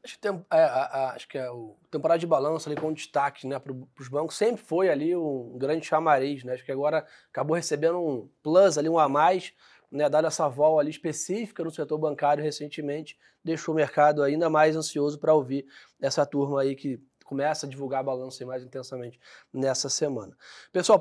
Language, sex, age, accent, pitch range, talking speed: Portuguese, male, 20-39, Brazilian, 145-165 Hz, 195 wpm